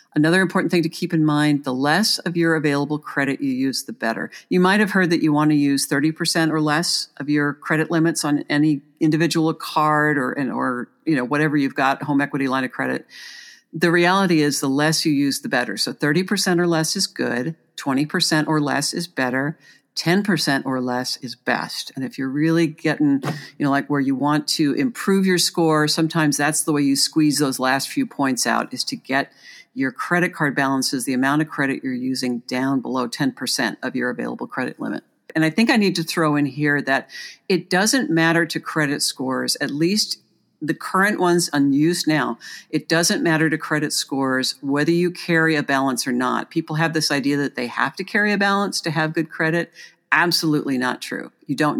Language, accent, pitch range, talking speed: English, American, 140-170 Hz, 210 wpm